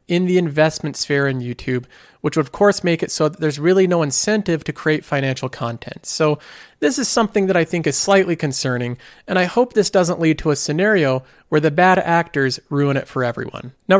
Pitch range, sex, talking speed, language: 135-190 Hz, male, 215 wpm, English